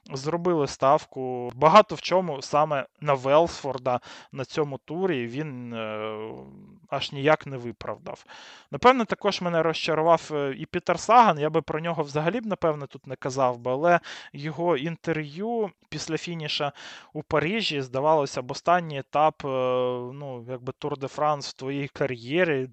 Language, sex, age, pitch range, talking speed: Ukrainian, male, 20-39, 130-160 Hz, 135 wpm